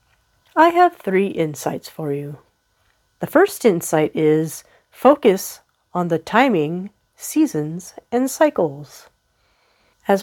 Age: 40-59